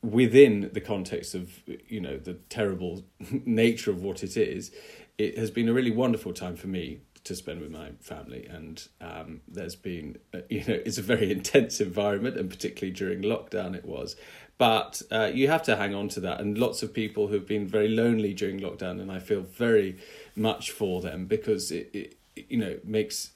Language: English